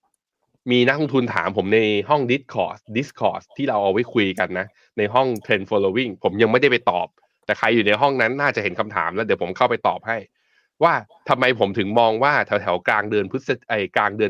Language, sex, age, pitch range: Thai, male, 20-39, 100-130 Hz